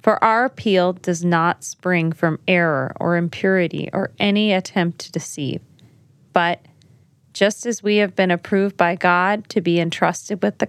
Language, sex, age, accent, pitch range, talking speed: English, female, 30-49, American, 160-195 Hz, 165 wpm